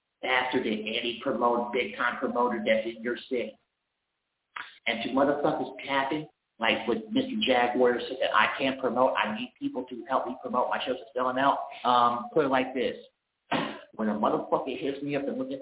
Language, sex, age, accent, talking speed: English, male, 50-69, American, 190 wpm